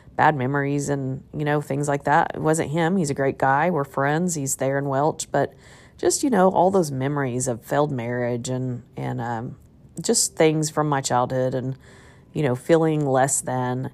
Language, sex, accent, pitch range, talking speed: English, female, American, 135-165 Hz, 195 wpm